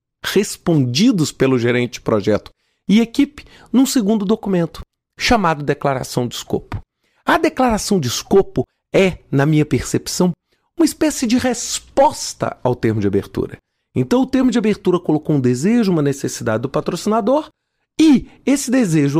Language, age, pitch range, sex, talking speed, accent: Portuguese, 40-59, 150-245 Hz, male, 140 wpm, Brazilian